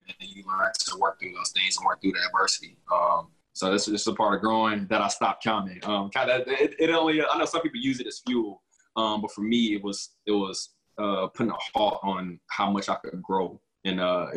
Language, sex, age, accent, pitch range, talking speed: English, male, 20-39, American, 95-105 Hz, 260 wpm